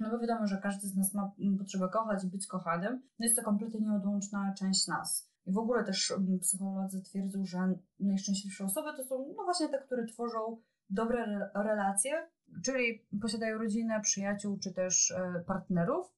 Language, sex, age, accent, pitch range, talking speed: Polish, female, 20-39, native, 195-245 Hz, 165 wpm